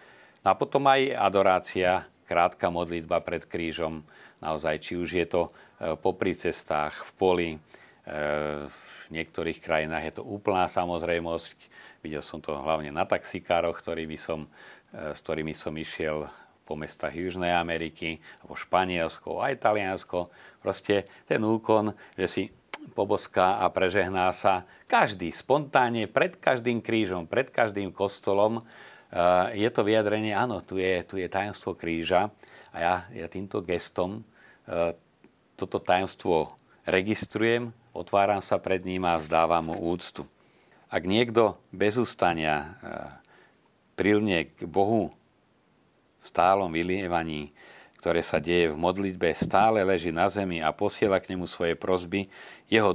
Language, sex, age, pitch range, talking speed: Slovak, male, 40-59, 80-100 Hz, 130 wpm